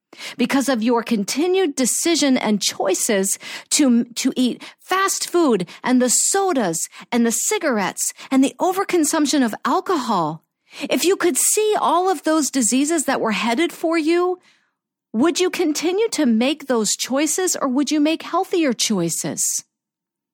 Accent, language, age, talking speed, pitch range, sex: American, English, 50-69, 145 wpm, 245-345 Hz, female